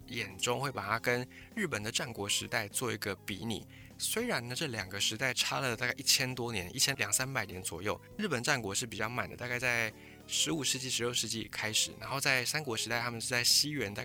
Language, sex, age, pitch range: Chinese, male, 20-39, 105-130 Hz